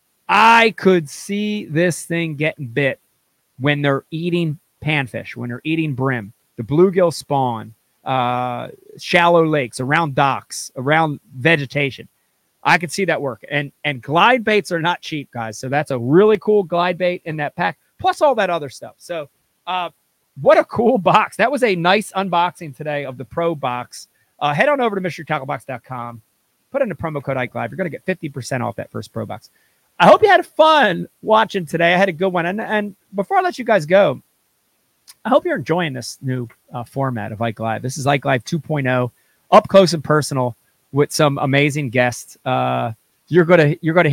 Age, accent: 30-49, American